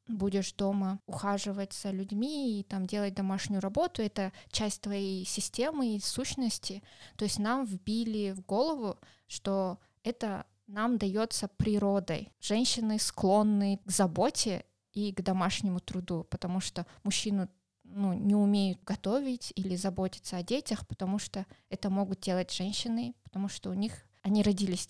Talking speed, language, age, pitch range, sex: 140 wpm, Russian, 20-39, 195-225 Hz, female